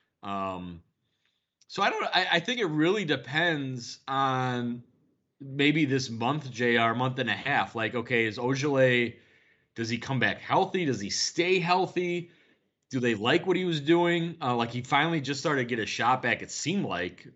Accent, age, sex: American, 30-49, male